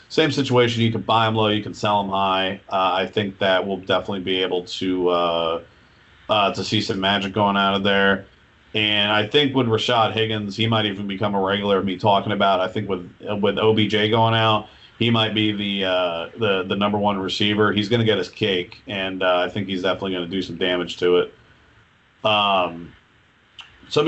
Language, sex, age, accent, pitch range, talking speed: English, male, 40-59, American, 95-115 Hz, 210 wpm